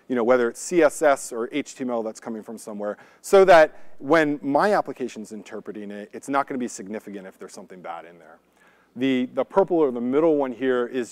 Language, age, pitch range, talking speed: English, 40-59, 120-170 Hz, 210 wpm